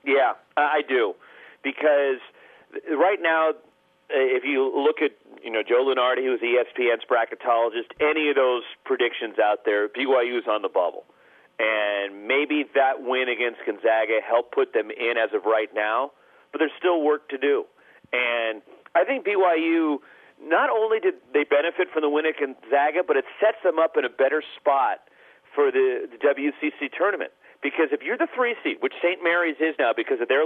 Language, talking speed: English, 175 wpm